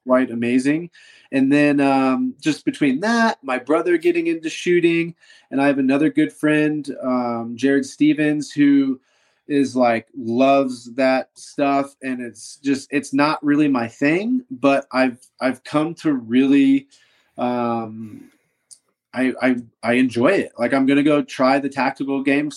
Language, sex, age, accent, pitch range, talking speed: English, male, 20-39, American, 125-150 Hz, 150 wpm